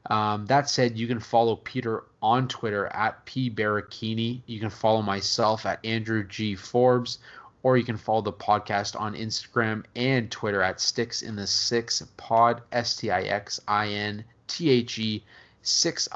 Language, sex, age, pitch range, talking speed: English, male, 20-39, 105-120 Hz, 165 wpm